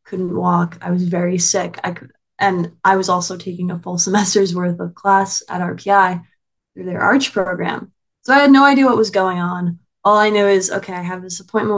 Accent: American